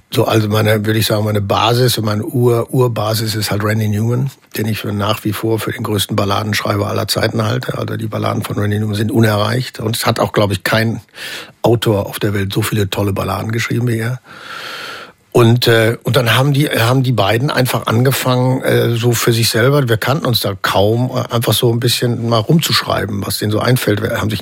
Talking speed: 210 wpm